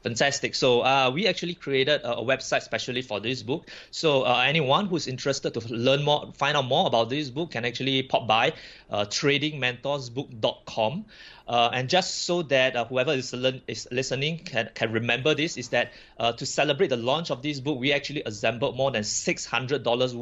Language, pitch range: English, 120-150 Hz